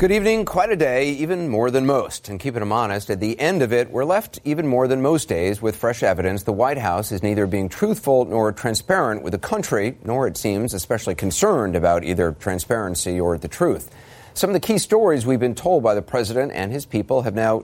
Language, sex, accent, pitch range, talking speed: English, male, American, 100-135 Hz, 230 wpm